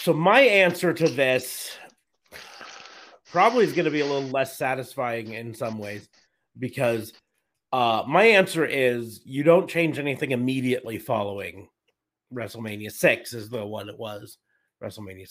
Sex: male